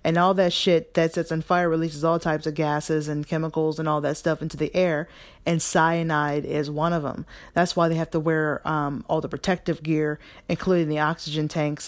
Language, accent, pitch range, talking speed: English, American, 150-170 Hz, 215 wpm